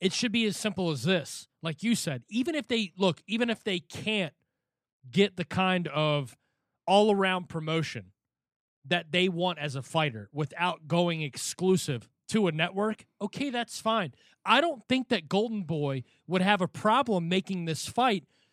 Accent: American